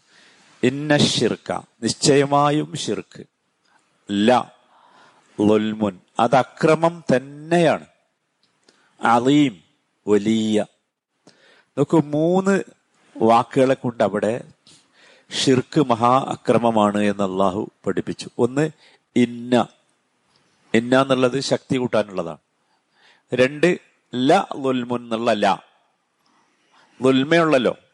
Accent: native